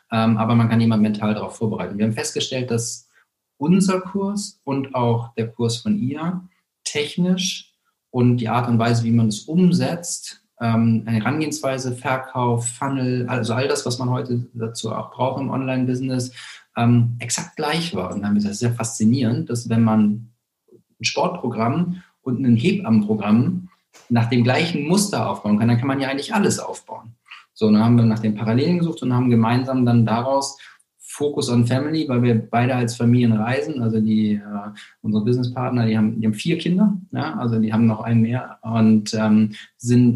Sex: male